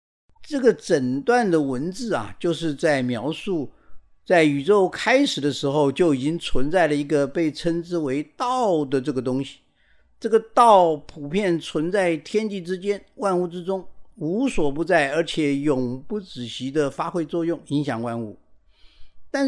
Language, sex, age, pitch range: Chinese, male, 50-69, 140-210 Hz